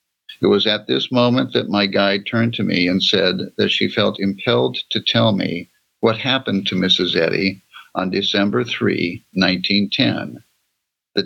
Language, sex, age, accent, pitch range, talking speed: English, male, 50-69, American, 100-115 Hz, 160 wpm